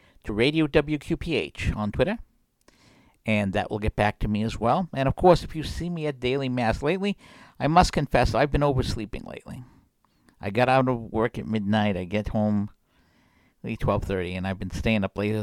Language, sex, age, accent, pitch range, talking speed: English, male, 60-79, American, 105-140 Hz, 195 wpm